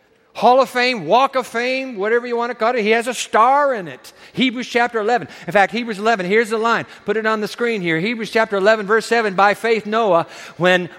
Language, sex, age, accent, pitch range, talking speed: English, male, 50-69, American, 180-240 Hz, 235 wpm